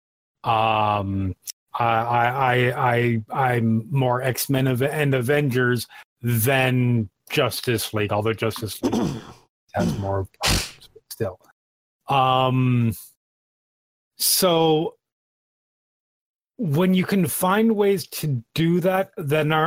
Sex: male